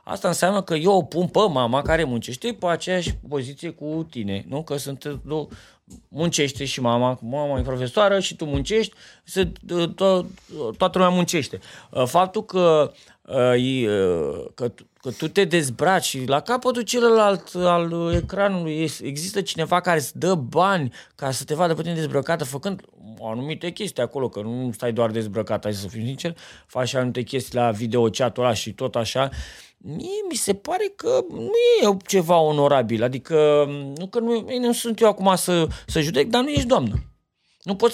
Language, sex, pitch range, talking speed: Romanian, male, 135-205 Hz, 160 wpm